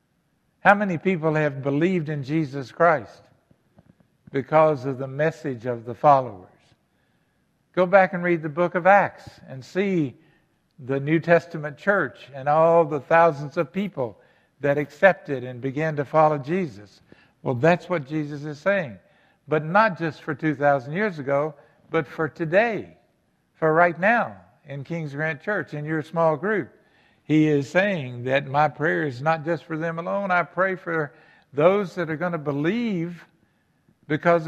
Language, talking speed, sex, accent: English, 160 wpm, male, American